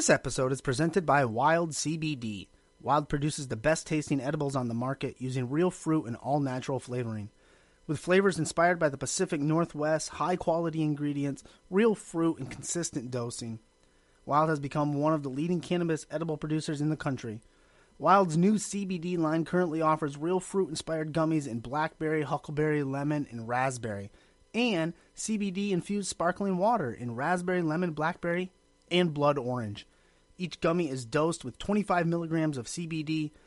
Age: 30-49